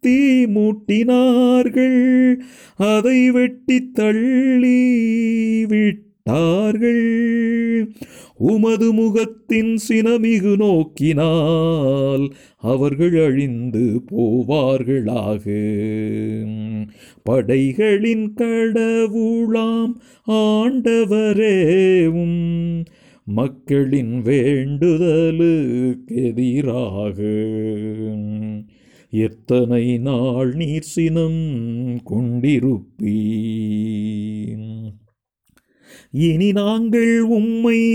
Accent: native